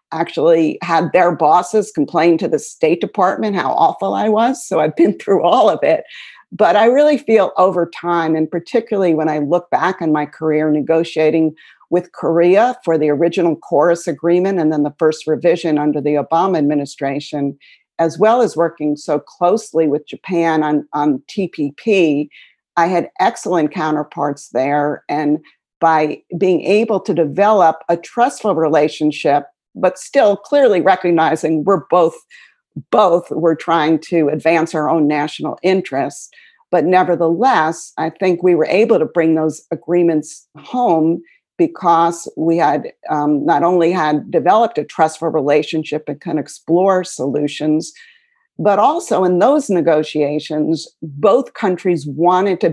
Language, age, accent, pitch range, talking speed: English, 50-69, American, 155-185 Hz, 145 wpm